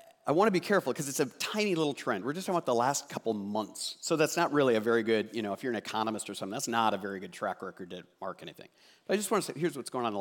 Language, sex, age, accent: English, male, 50-69, American